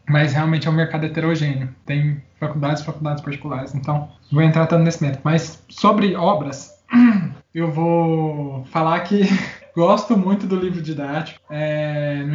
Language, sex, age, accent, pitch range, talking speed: Portuguese, male, 20-39, Brazilian, 150-195 Hz, 150 wpm